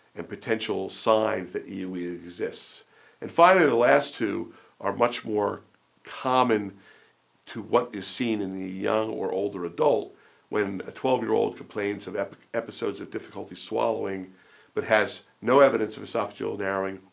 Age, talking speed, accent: 50-69, 145 wpm, American